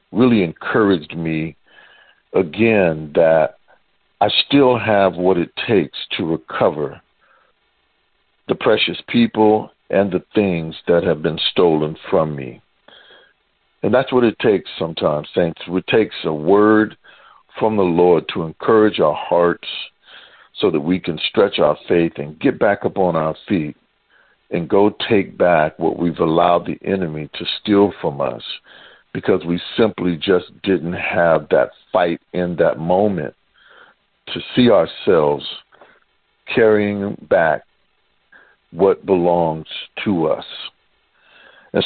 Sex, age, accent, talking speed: male, 60-79, American, 130 wpm